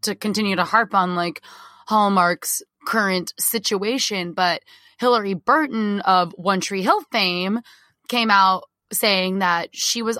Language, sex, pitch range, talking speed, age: English, female, 175-210 Hz, 135 wpm, 20-39